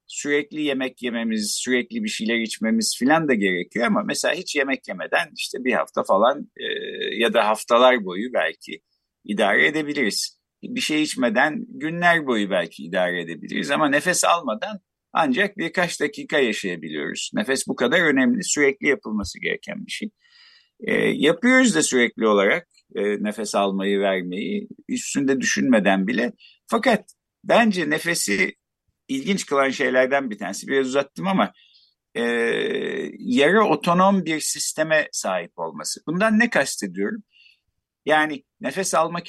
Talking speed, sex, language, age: 135 wpm, male, Turkish, 50-69